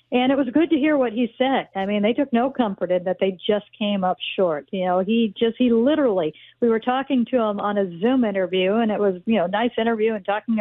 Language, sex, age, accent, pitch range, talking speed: English, female, 50-69, American, 195-235 Hz, 270 wpm